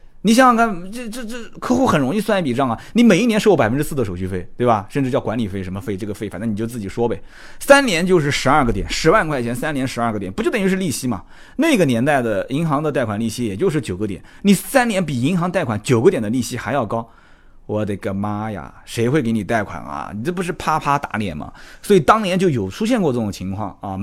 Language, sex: Chinese, male